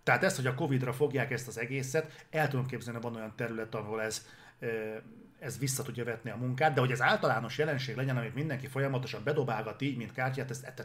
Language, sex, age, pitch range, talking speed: Hungarian, male, 30-49, 115-140 Hz, 215 wpm